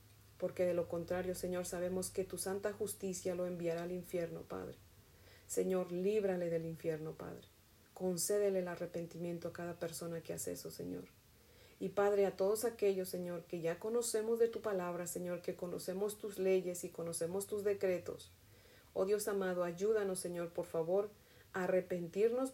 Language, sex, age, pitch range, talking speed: Spanish, female, 40-59, 170-200 Hz, 160 wpm